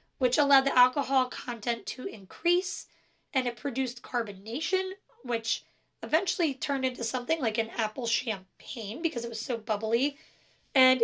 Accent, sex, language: American, female, English